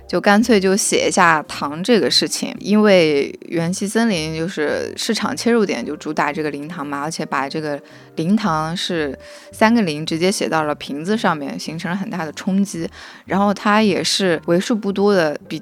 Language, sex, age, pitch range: Chinese, female, 20-39, 160-220 Hz